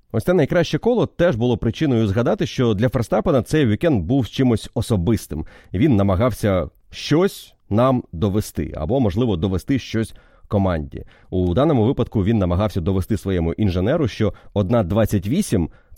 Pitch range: 95-135 Hz